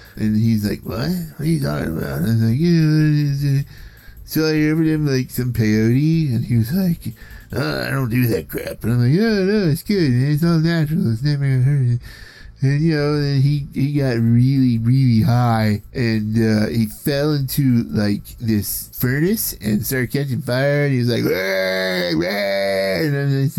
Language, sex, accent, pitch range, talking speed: English, male, American, 110-145 Hz, 190 wpm